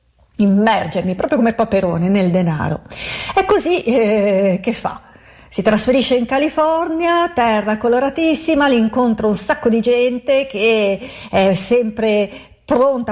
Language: Italian